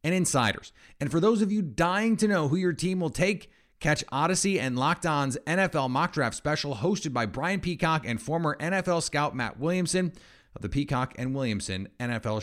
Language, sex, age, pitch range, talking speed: English, male, 30-49, 115-160 Hz, 195 wpm